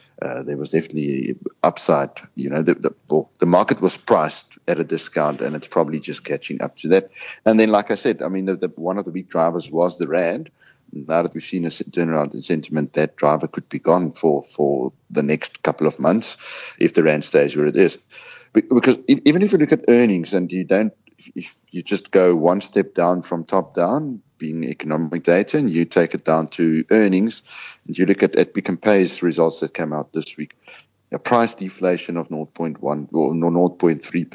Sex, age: male, 60-79